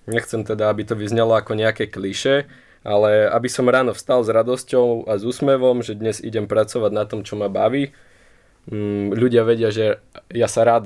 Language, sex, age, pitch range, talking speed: Slovak, male, 20-39, 105-120 Hz, 175 wpm